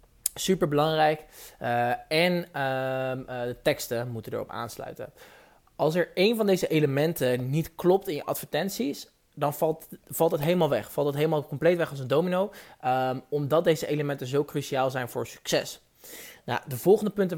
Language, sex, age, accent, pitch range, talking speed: Dutch, male, 20-39, Dutch, 130-160 Hz, 160 wpm